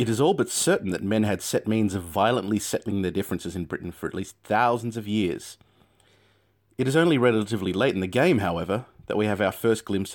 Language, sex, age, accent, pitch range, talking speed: English, male, 30-49, Australian, 95-115 Hz, 225 wpm